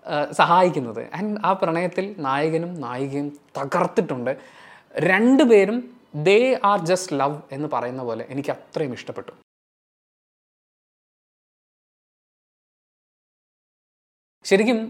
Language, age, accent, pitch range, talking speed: Malayalam, 20-39, native, 145-225 Hz, 75 wpm